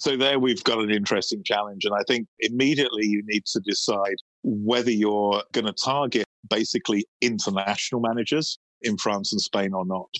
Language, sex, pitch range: English, male, 105-125 Hz